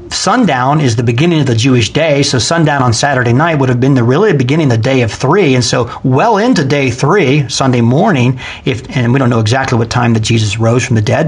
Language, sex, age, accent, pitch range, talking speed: English, male, 40-59, American, 120-155 Hz, 250 wpm